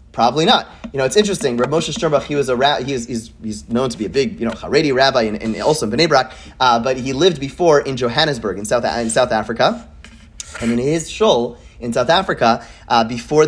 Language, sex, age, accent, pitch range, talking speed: English, male, 30-49, American, 120-180 Hz, 225 wpm